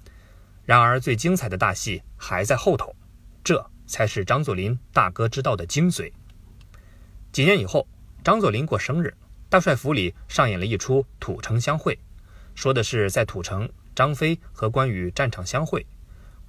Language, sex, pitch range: Chinese, male, 90-130 Hz